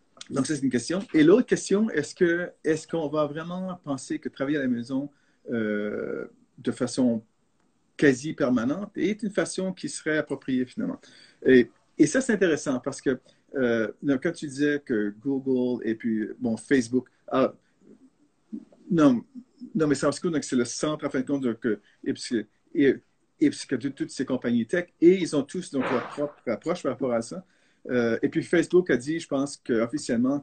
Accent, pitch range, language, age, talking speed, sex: Canadian, 130-195 Hz, French, 50-69, 185 wpm, male